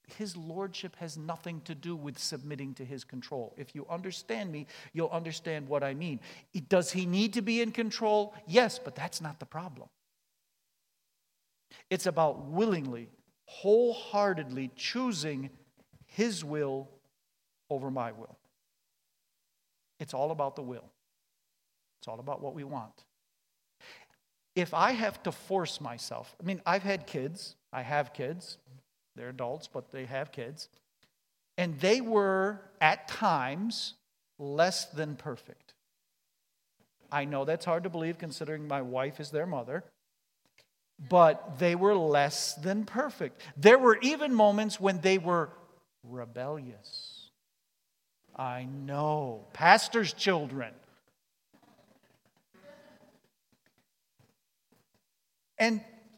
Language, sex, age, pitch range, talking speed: English, male, 50-69, 140-195 Hz, 120 wpm